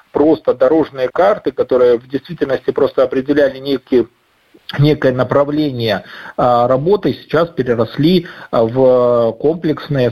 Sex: male